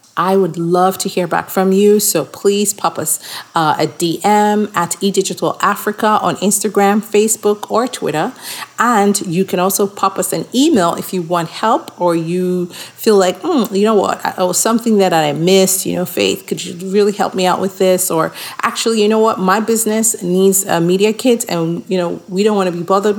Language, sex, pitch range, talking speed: English, female, 180-210 Hz, 200 wpm